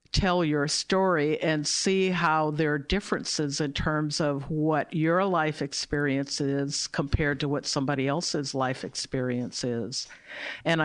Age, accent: 50-69, American